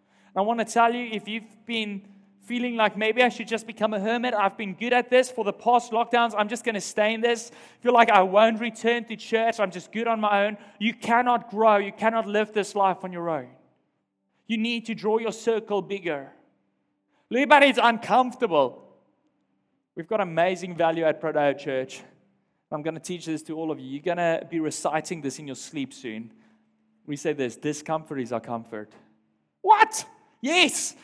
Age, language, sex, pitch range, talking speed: 20-39, English, male, 195-255 Hz, 195 wpm